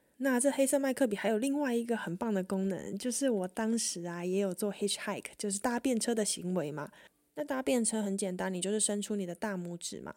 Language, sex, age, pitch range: Chinese, female, 20-39, 190-230 Hz